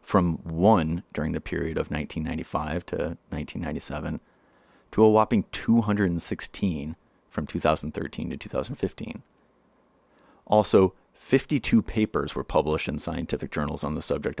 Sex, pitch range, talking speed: male, 90-110 Hz, 115 wpm